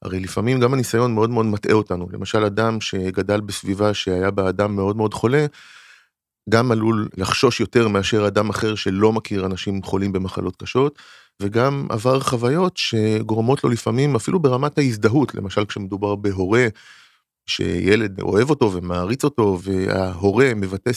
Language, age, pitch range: Hebrew, 30-49, 100-120 Hz